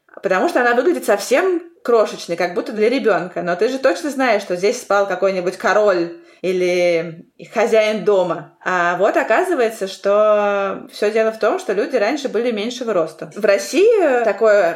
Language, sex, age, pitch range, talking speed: Russian, female, 20-39, 185-230 Hz, 165 wpm